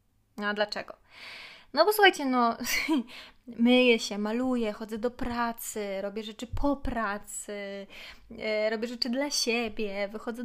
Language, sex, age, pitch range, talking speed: Polish, female, 20-39, 210-260 Hz, 115 wpm